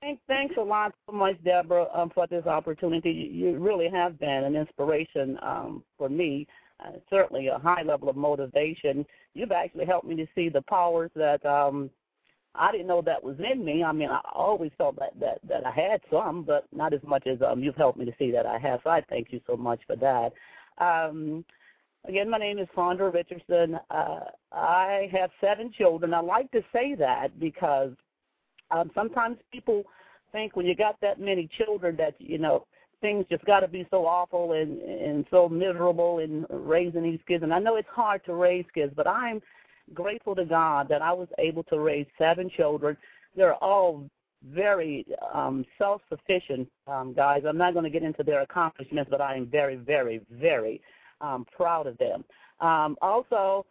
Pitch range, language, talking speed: 155-195 Hz, English, 190 wpm